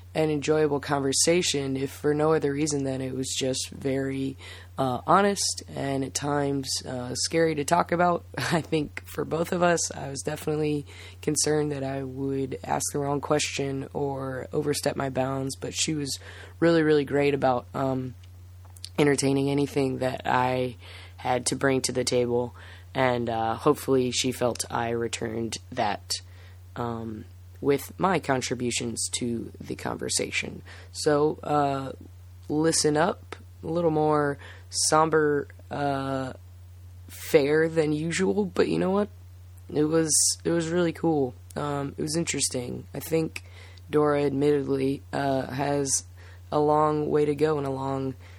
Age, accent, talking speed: 20-39, American, 145 wpm